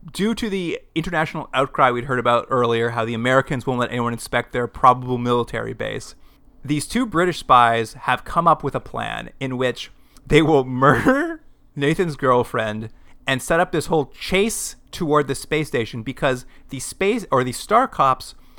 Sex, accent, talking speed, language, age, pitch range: male, American, 175 wpm, English, 30-49, 120-155 Hz